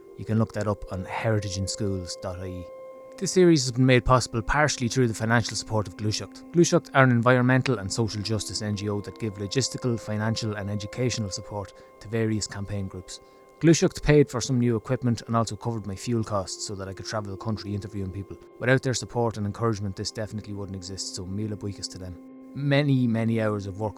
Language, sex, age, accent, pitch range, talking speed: English, male, 20-39, Irish, 100-125 Hz, 195 wpm